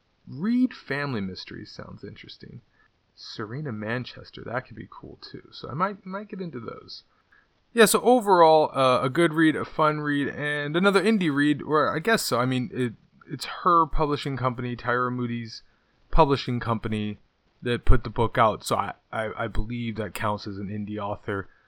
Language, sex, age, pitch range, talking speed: English, male, 20-39, 105-130 Hz, 175 wpm